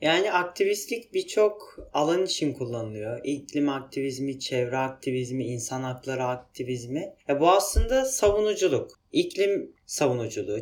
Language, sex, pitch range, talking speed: Turkish, male, 140-235 Hz, 105 wpm